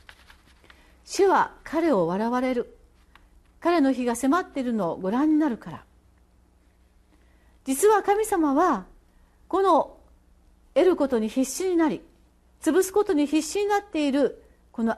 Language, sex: Japanese, female